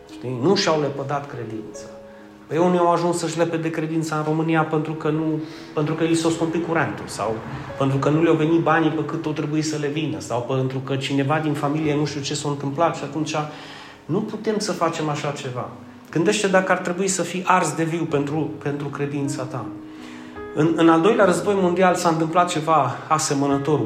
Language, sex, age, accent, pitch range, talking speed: Romanian, male, 30-49, native, 145-190 Hz, 200 wpm